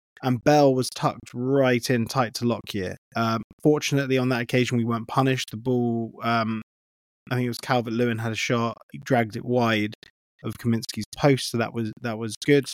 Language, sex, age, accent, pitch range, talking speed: English, male, 20-39, British, 115-130 Hz, 195 wpm